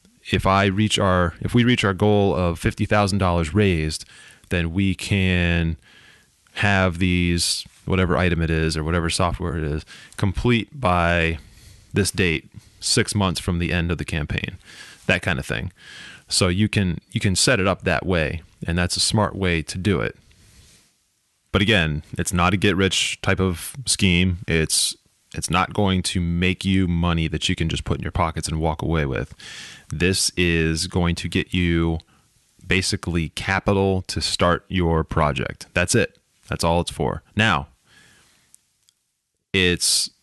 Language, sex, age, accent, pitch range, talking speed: English, male, 20-39, American, 85-100 Hz, 165 wpm